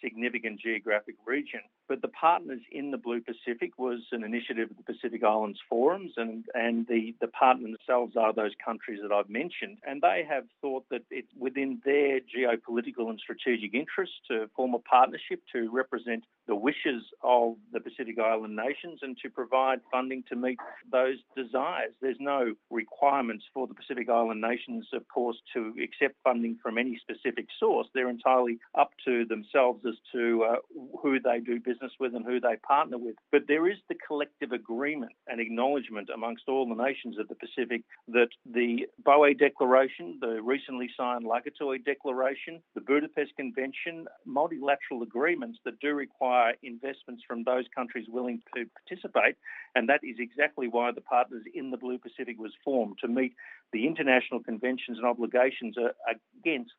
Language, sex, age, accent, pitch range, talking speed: English, male, 50-69, Australian, 115-135 Hz, 165 wpm